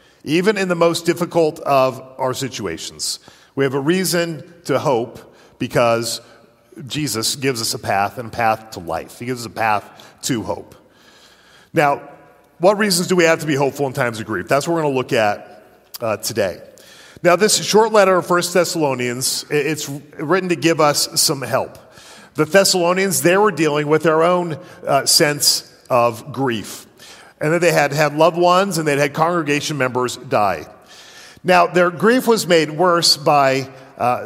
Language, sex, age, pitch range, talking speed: English, male, 40-59, 135-170 Hz, 175 wpm